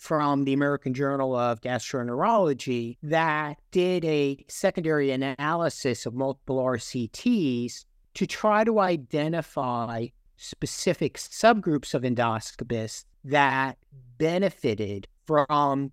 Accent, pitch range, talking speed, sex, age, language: American, 120-155 Hz, 95 wpm, male, 50-69, English